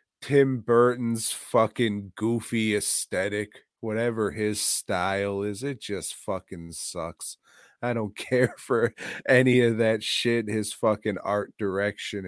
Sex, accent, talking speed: male, American, 120 wpm